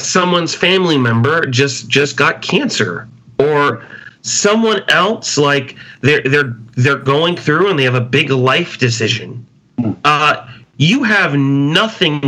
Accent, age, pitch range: American, 40-59, 125-170 Hz